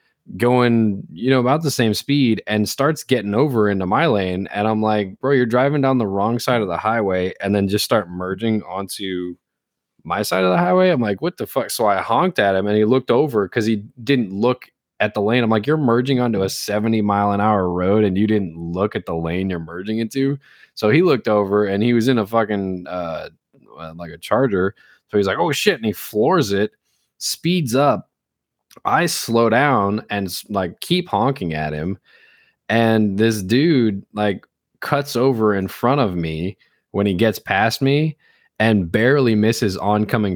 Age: 20-39